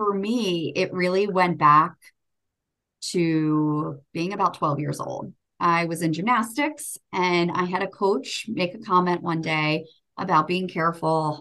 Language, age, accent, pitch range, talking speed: English, 30-49, American, 160-210 Hz, 155 wpm